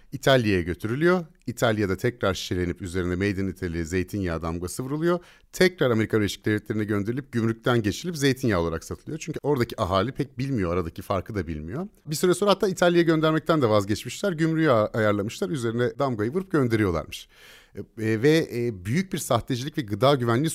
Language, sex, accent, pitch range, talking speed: Turkish, male, native, 100-155 Hz, 155 wpm